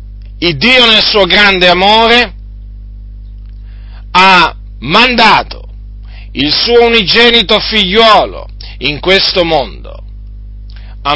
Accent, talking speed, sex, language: native, 85 wpm, male, Italian